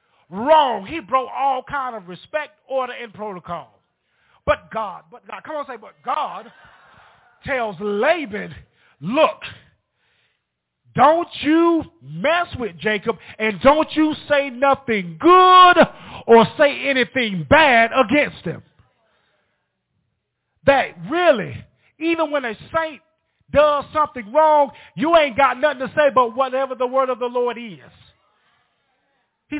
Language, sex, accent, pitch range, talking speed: English, male, American, 225-305 Hz, 130 wpm